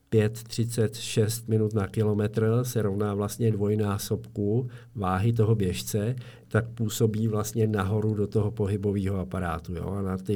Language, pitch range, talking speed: Czech, 105-115 Hz, 135 wpm